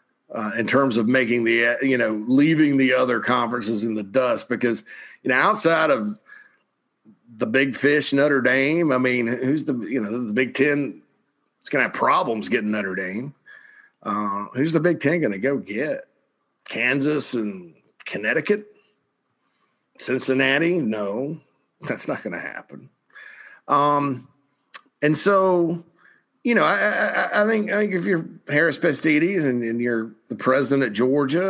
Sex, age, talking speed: male, 50-69, 155 wpm